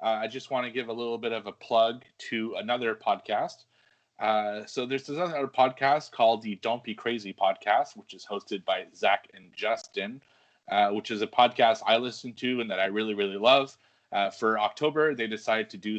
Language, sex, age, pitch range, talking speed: English, male, 20-39, 100-120 Hz, 205 wpm